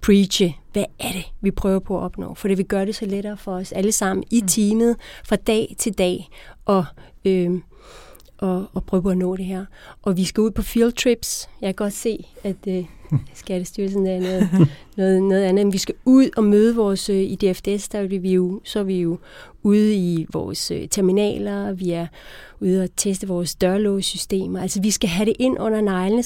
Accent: native